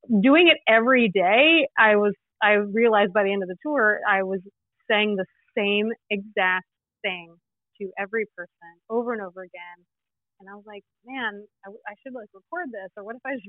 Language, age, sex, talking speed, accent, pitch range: English, 30-49, female, 195 wpm, American, 190-230 Hz